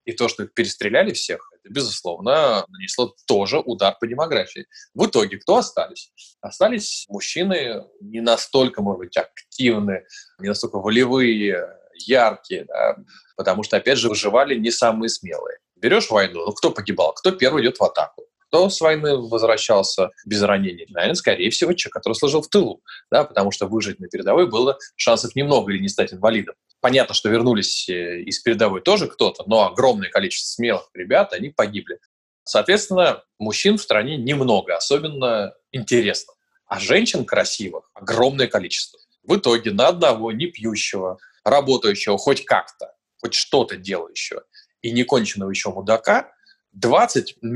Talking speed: 145 wpm